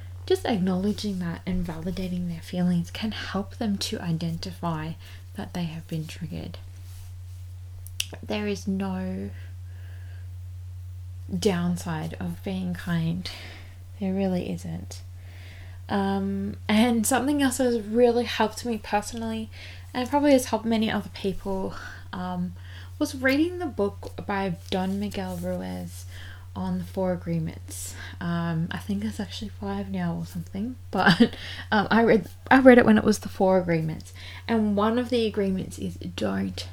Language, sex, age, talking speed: English, female, 20-39, 140 wpm